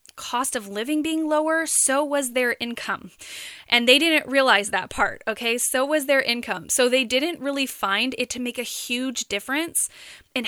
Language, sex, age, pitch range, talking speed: English, female, 10-29, 215-260 Hz, 185 wpm